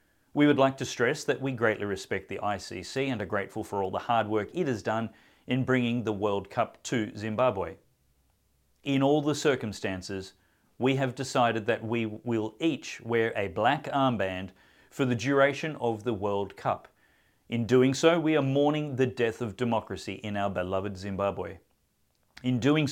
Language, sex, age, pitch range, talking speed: English, male, 40-59, 105-135 Hz, 175 wpm